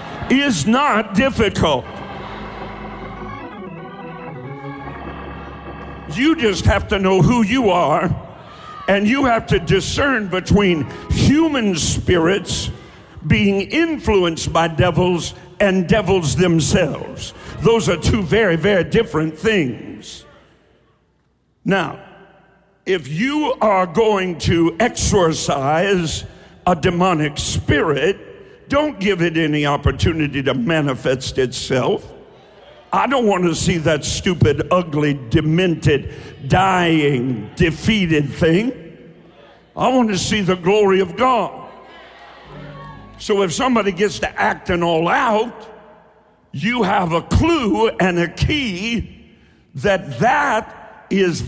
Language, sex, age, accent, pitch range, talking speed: English, male, 60-79, American, 160-215 Hz, 105 wpm